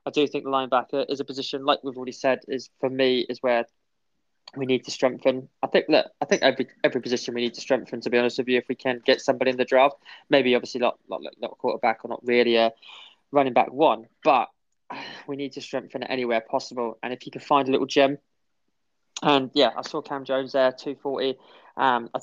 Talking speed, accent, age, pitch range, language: 230 wpm, British, 20-39, 125-145 Hz, English